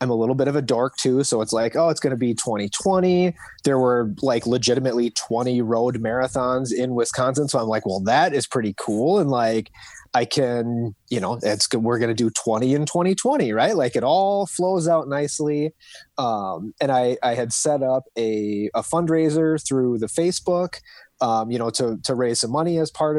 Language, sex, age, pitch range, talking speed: English, male, 30-49, 115-150 Hz, 205 wpm